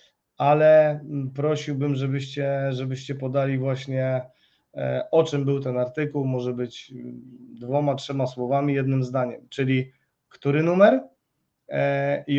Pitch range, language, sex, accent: 130-150 Hz, Polish, male, native